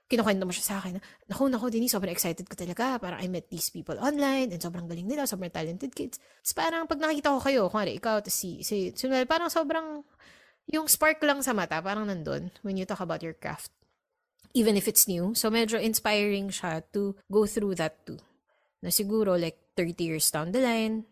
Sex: female